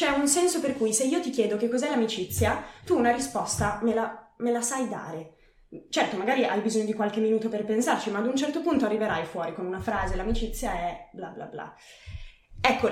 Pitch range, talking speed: 190-245 Hz, 215 wpm